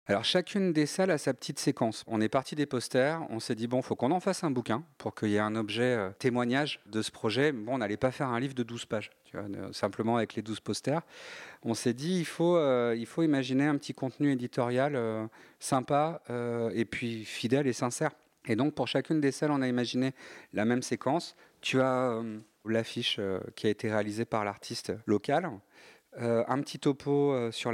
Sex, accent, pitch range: male, French, 110-135 Hz